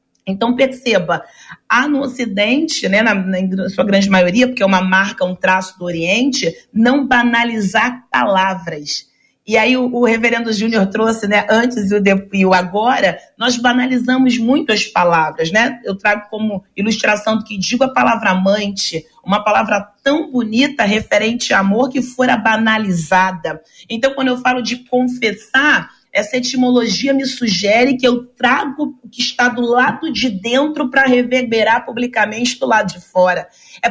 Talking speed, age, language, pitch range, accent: 160 wpm, 40-59, Portuguese, 210-260 Hz, Brazilian